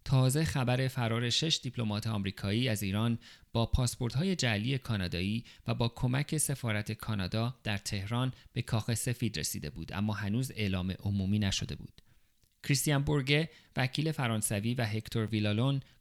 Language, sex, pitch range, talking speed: Persian, male, 105-130 Hz, 140 wpm